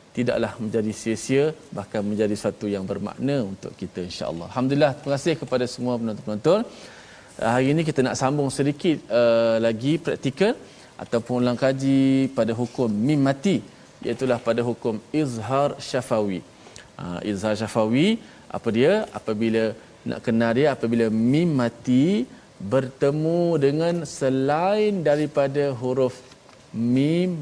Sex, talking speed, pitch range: male, 125 wpm, 115-145 Hz